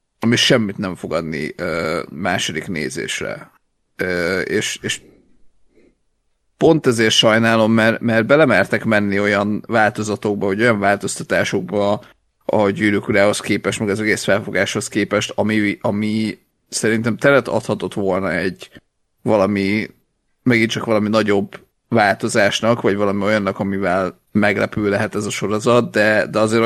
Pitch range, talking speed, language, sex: 100-110 Hz, 125 wpm, Hungarian, male